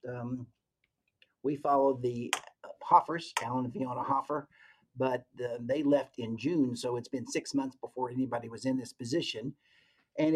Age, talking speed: 50-69, 150 wpm